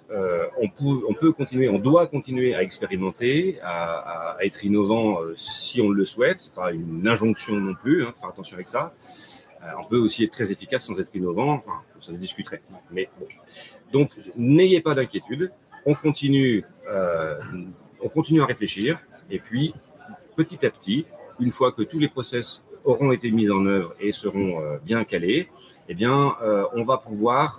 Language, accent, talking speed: French, French, 185 wpm